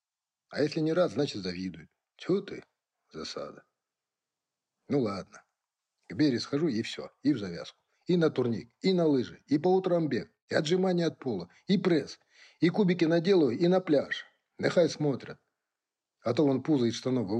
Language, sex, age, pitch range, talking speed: Russian, male, 50-69, 125-180 Hz, 170 wpm